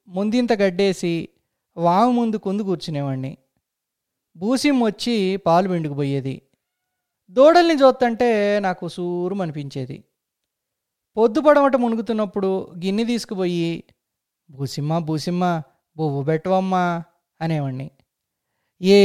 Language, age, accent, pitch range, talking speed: Telugu, 20-39, native, 165-230 Hz, 80 wpm